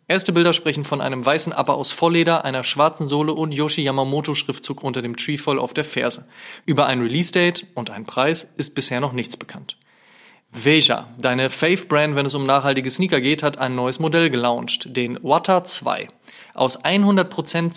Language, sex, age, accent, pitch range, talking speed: German, male, 20-39, German, 130-160 Hz, 170 wpm